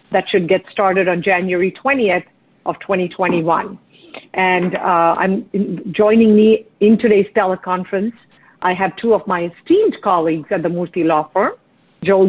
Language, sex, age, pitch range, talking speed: English, female, 50-69, 175-200 Hz, 145 wpm